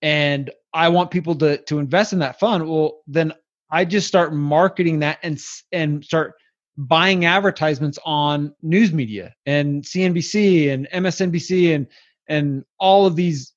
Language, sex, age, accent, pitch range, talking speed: English, male, 20-39, American, 150-195 Hz, 150 wpm